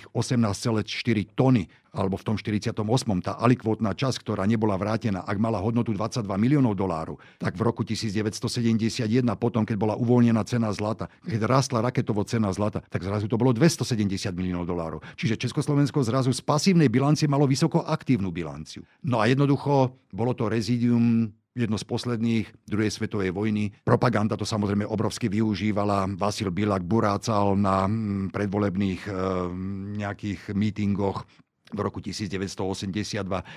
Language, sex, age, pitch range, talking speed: Slovak, male, 50-69, 95-120 Hz, 140 wpm